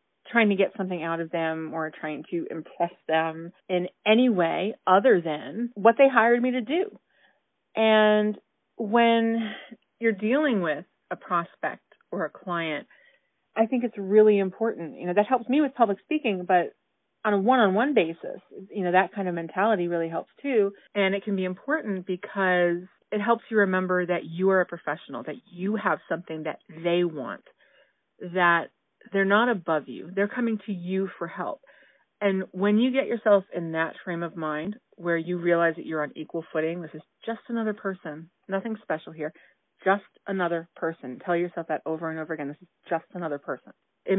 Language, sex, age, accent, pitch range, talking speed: English, female, 30-49, American, 170-215 Hz, 185 wpm